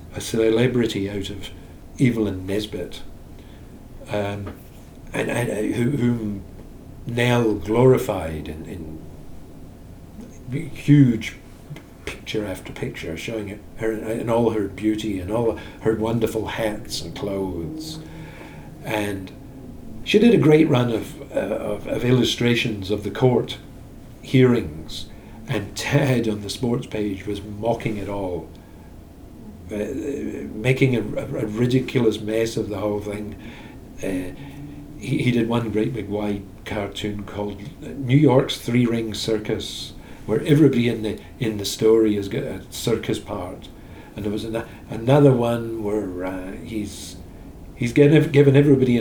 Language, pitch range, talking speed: English, 95-120 Hz, 130 wpm